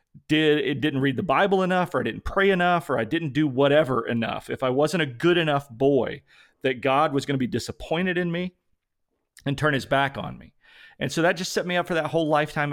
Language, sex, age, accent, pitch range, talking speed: English, male, 40-59, American, 130-160 Hz, 240 wpm